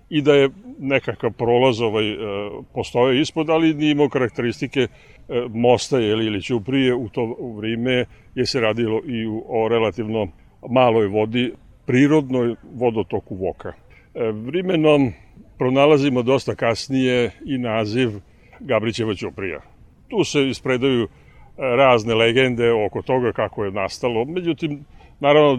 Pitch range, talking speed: 110-135 Hz, 115 wpm